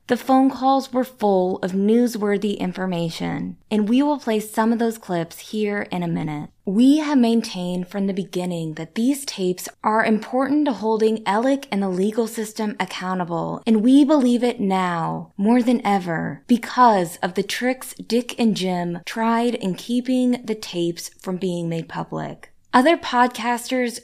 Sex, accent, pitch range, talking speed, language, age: female, American, 185-240 Hz, 160 wpm, English, 20-39